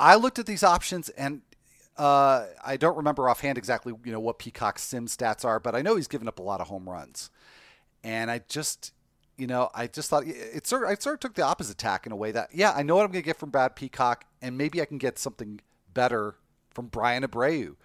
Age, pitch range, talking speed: 40-59, 115-150 Hz, 245 wpm